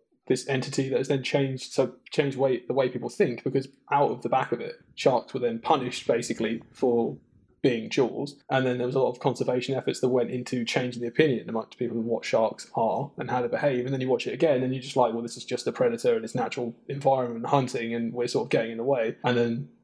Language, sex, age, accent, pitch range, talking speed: English, male, 20-39, British, 120-140 Hz, 255 wpm